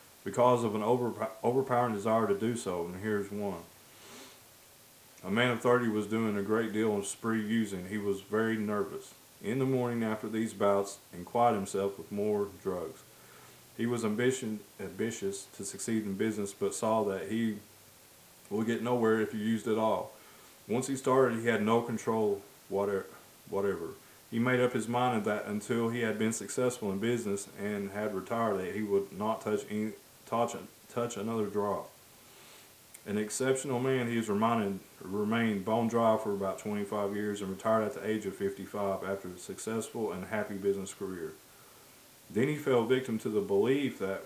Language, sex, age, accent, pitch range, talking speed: English, male, 30-49, American, 100-120 Hz, 170 wpm